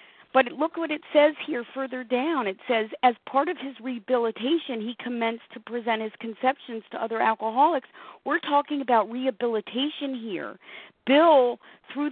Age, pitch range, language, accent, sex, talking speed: 40-59, 220-285 Hz, English, American, female, 155 wpm